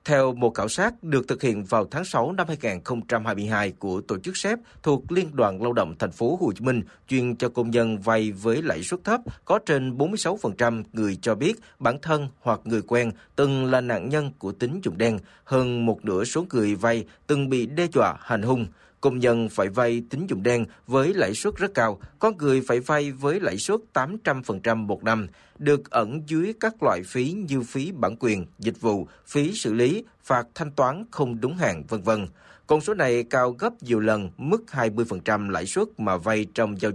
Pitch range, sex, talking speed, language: 110-155 Hz, male, 205 wpm, Vietnamese